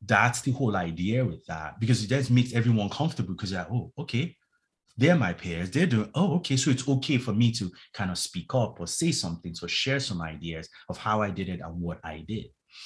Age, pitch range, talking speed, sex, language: 30-49, 95-125 Hz, 230 wpm, male, English